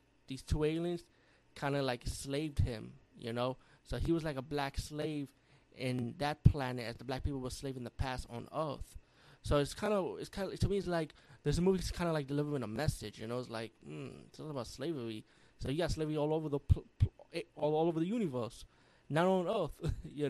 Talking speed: 215 wpm